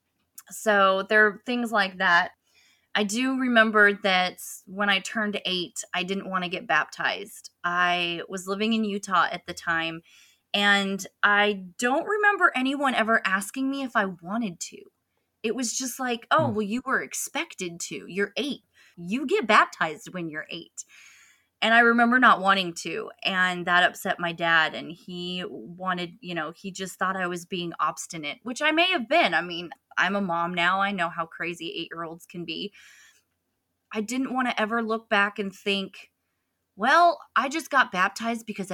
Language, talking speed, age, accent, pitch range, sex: English, 175 wpm, 20-39, American, 175-230 Hz, female